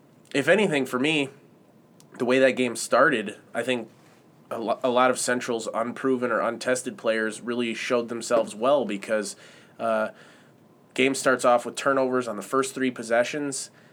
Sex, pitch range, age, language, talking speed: male, 110-125 Hz, 20-39, English, 150 wpm